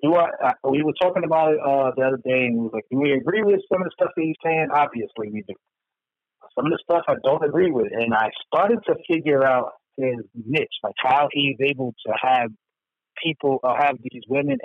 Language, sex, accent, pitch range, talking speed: English, male, American, 125-175 Hz, 230 wpm